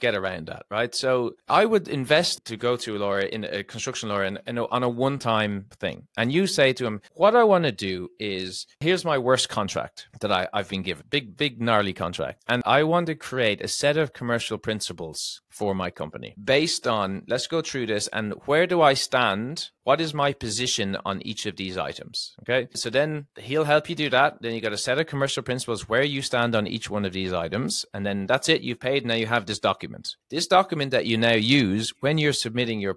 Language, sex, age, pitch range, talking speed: English, male, 30-49, 100-135 Hz, 230 wpm